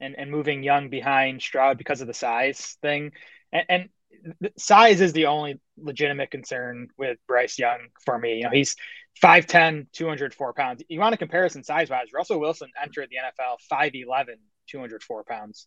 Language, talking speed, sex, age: English, 170 wpm, male, 20-39